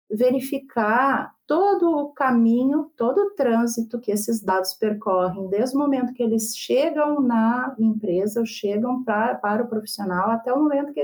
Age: 40-59